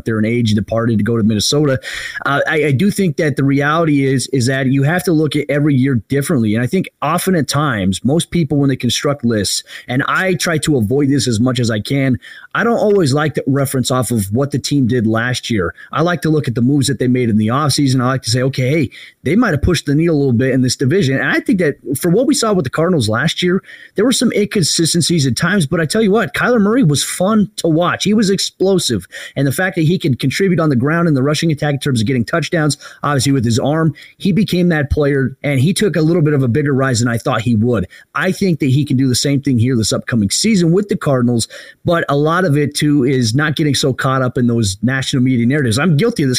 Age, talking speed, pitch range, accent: 30-49, 270 wpm, 130-165 Hz, American